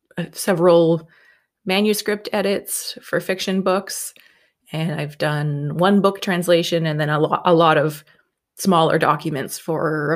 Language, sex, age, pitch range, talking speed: English, female, 20-39, 155-190 Hz, 130 wpm